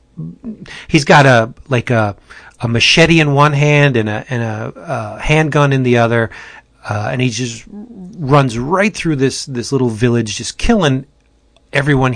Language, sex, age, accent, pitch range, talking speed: English, male, 30-49, American, 115-140 Hz, 165 wpm